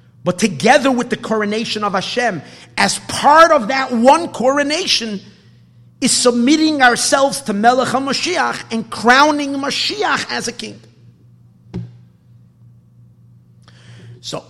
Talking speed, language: 110 wpm, English